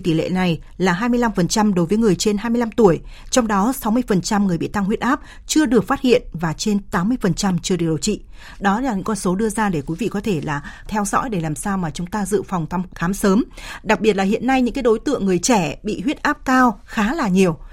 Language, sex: Vietnamese, female